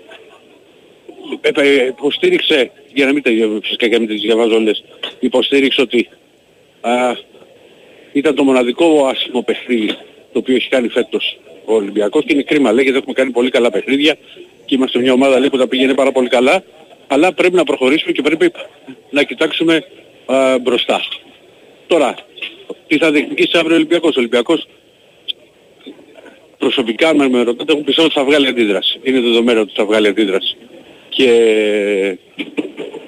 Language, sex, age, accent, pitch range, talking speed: Greek, male, 50-69, native, 125-160 Hz, 145 wpm